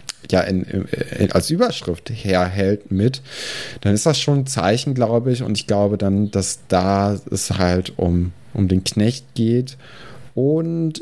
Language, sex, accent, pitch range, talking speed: German, male, German, 95-115 Hz, 145 wpm